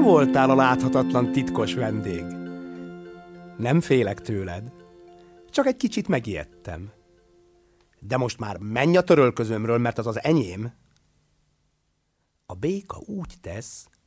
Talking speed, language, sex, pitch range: 110 wpm, Hungarian, male, 90-140 Hz